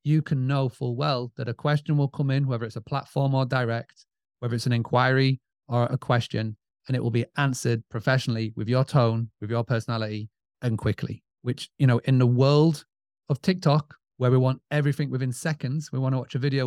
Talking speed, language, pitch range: 210 wpm, English, 120-145 Hz